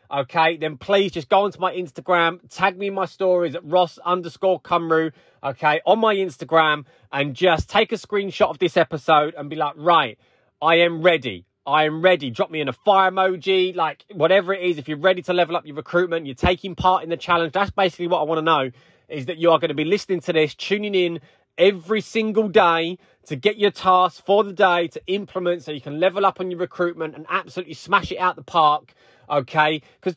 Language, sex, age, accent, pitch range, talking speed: English, male, 20-39, British, 155-190 Hz, 220 wpm